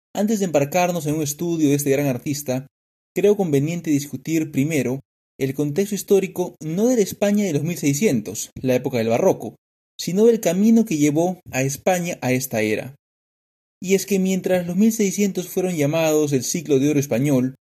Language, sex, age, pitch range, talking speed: Spanish, male, 30-49, 135-175 Hz, 170 wpm